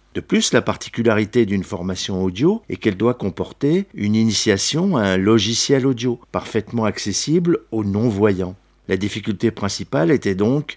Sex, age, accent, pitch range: male, 50-69, French, 100-130 Hz